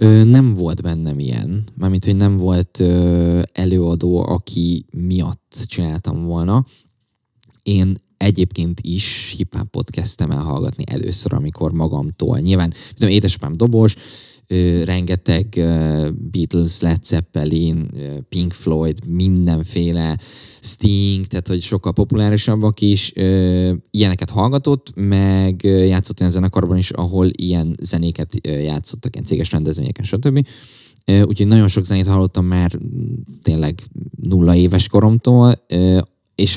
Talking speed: 115 wpm